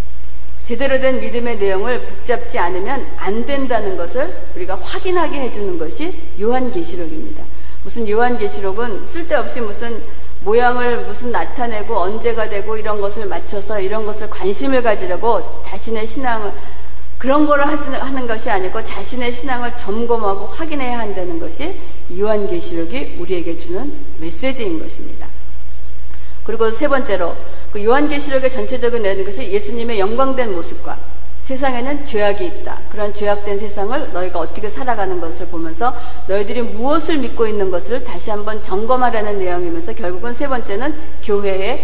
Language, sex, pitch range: Korean, female, 200-280 Hz